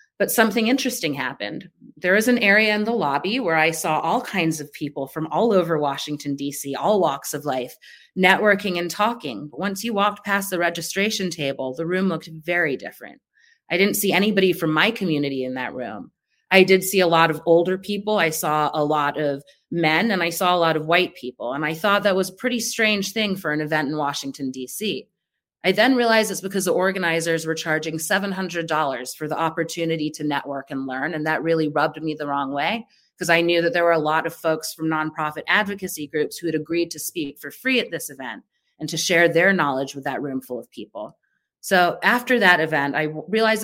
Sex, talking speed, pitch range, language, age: female, 215 wpm, 155-195 Hz, English, 30-49